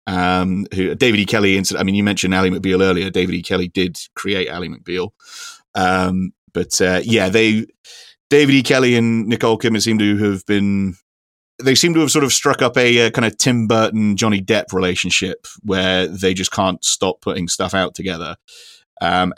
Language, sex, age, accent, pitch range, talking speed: English, male, 30-49, British, 95-115 Hz, 190 wpm